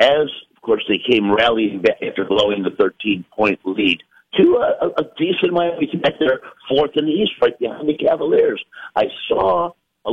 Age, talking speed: 50-69, 185 wpm